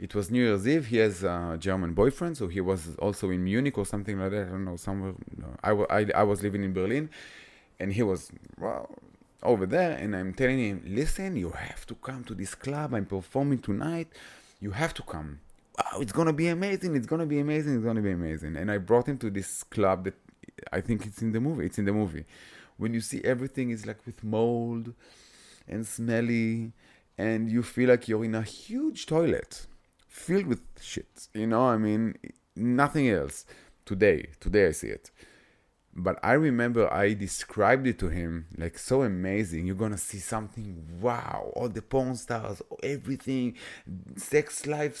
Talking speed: 190 wpm